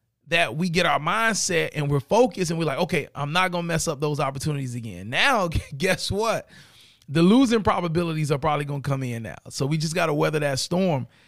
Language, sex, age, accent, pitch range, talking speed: English, male, 30-49, American, 125-170 Hz, 225 wpm